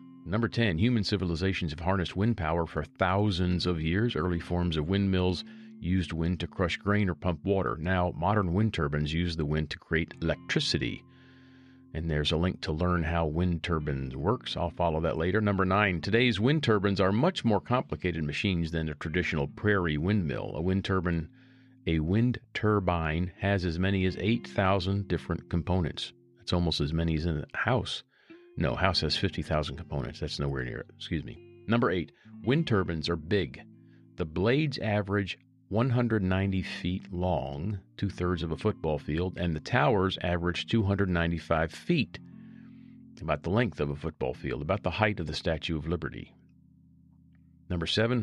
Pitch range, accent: 80-105 Hz, American